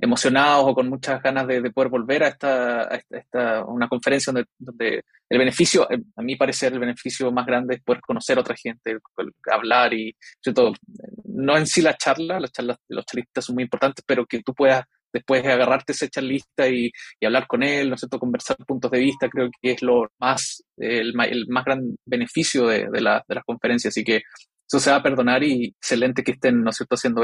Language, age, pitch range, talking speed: Spanish, 20-39, 125-140 Hz, 215 wpm